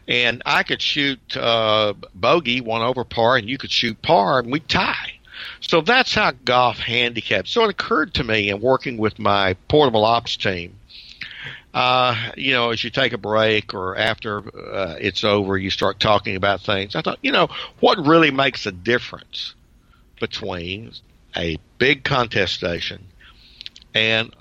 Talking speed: 165 wpm